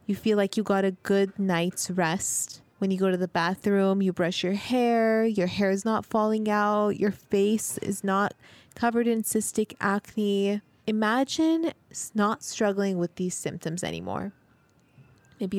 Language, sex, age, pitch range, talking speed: English, female, 20-39, 180-215 Hz, 160 wpm